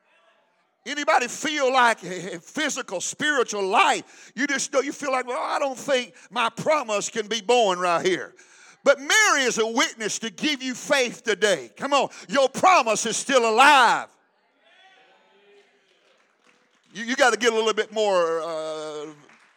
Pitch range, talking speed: 235-330 Hz, 155 wpm